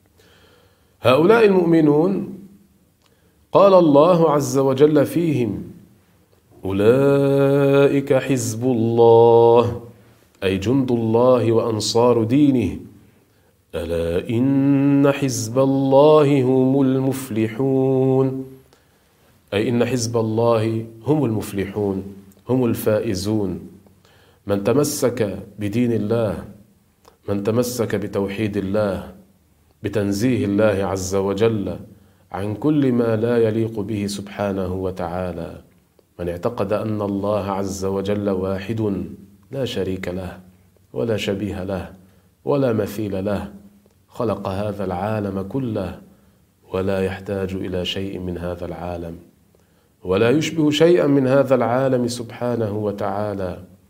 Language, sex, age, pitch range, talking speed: Arabic, male, 40-59, 95-120 Hz, 95 wpm